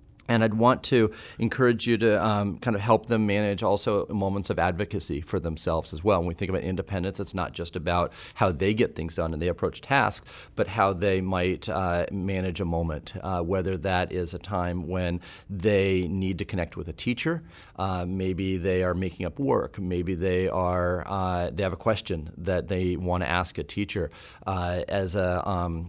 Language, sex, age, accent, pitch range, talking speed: English, male, 40-59, American, 90-105 Hz, 200 wpm